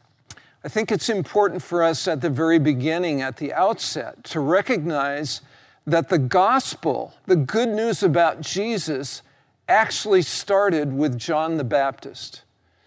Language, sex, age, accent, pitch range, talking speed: English, male, 60-79, American, 140-190 Hz, 135 wpm